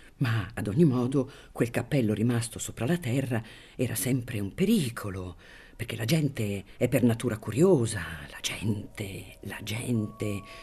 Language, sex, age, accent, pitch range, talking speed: Italian, female, 50-69, native, 115-165 Hz, 140 wpm